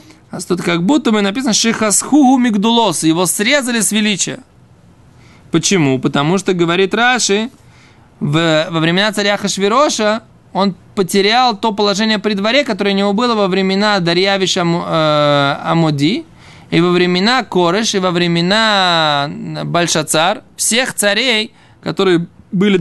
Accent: native